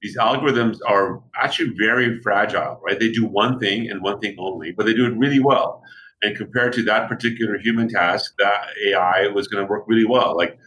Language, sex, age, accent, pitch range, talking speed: English, male, 40-59, American, 100-120 Hz, 200 wpm